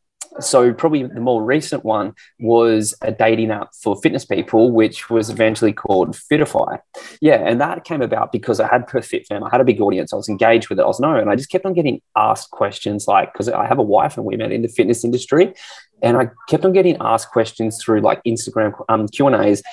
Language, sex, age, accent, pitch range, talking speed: English, male, 20-39, Australian, 105-125 Hz, 225 wpm